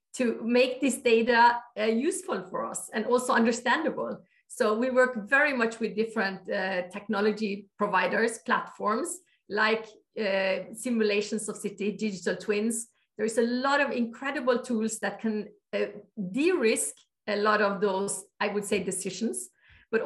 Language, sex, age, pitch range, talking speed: English, female, 50-69, 200-245 Hz, 145 wpm